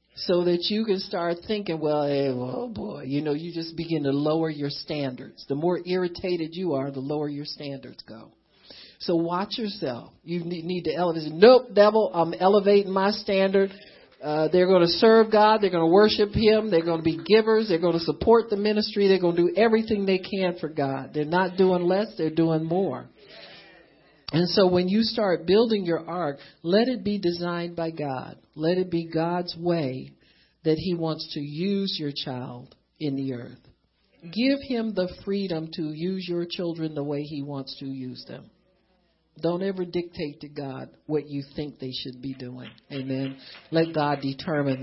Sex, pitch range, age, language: male, 145-190 Hz, 50-69, English